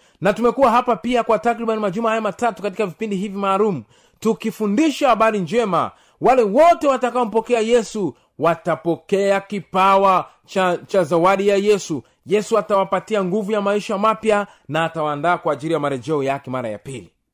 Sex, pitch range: male, 195-245 Hz